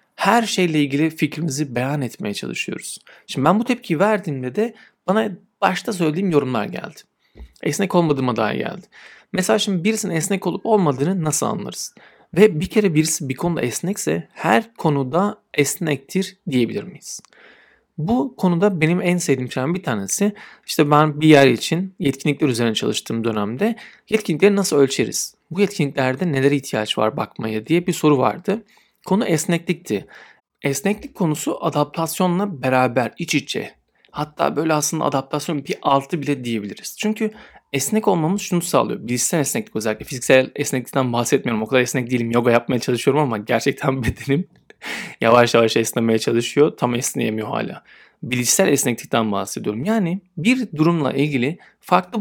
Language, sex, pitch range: Turkish, male, 130-190 Hz